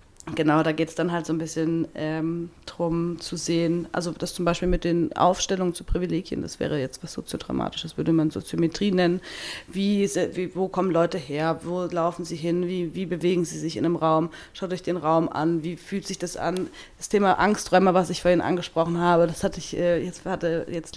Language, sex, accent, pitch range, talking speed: German, female, German, 170-190 Hz, 210 wpm